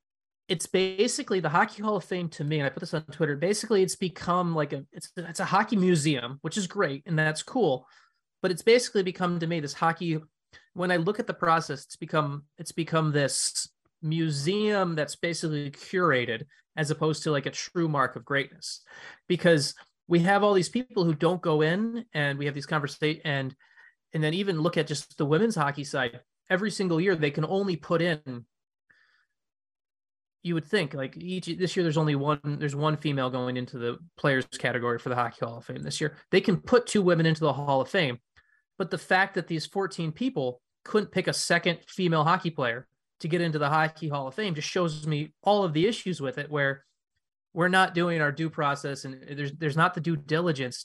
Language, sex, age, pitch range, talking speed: English, male, 20-39, 145-185 Hz, 210 wpm